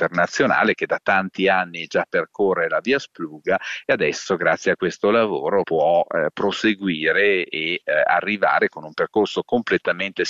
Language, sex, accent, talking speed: Italian, male, native, 145 wpm